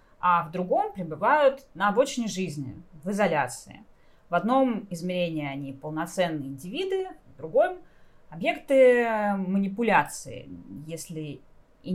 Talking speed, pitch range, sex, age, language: 105 wpm, 160-215 Hz, female, 30-49, Russian